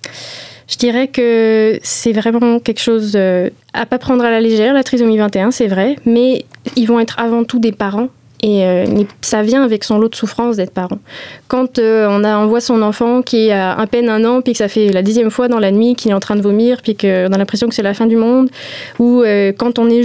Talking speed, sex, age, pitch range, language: 240 wpm, female, 20-39, 215-250 Hz, French